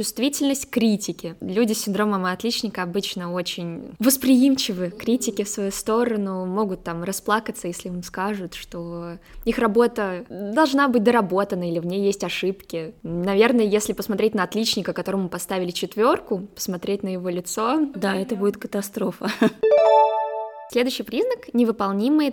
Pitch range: 185-240 Hz